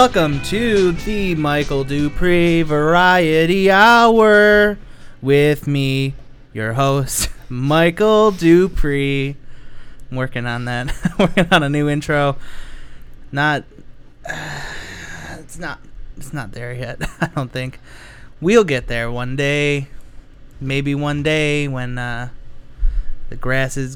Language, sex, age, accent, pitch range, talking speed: English, male, 20-39, American, 130-160 Hz, 115 wpm